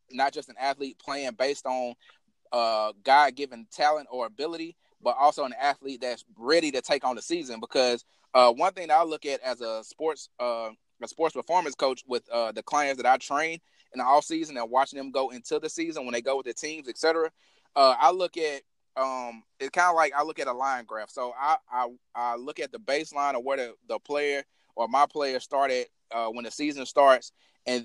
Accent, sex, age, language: American, male, 20-39, English